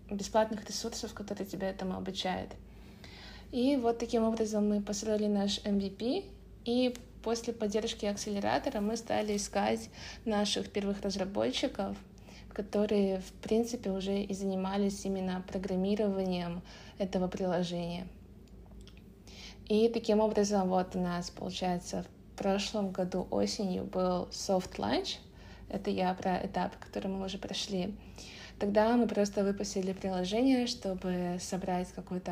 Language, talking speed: Russian, 120 wpm